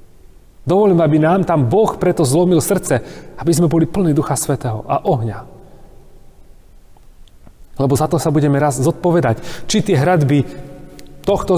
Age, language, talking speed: 30-49, Slovak, 140 wpm